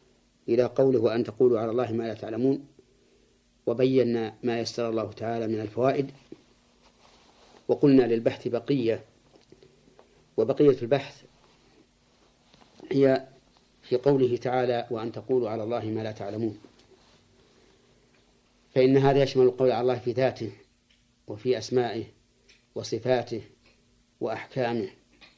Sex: male